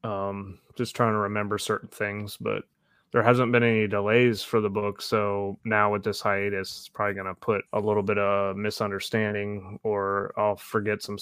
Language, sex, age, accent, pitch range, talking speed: English, male, 20-39, American, 105-115 Hz, 185 wpm